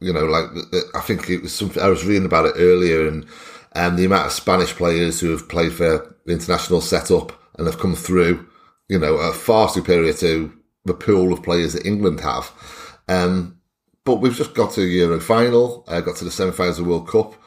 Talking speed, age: 220 wpm, 30-49